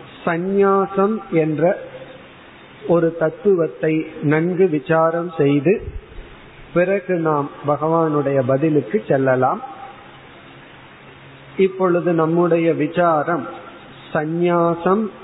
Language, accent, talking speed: Tamil, native, 65 wpm